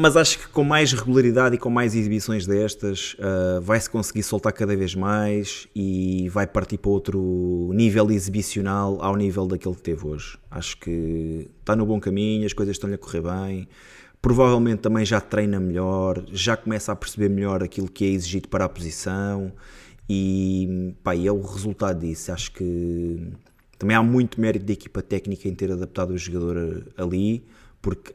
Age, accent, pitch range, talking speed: 20-39, Portuguese, 95-110 Hz, 175 wpm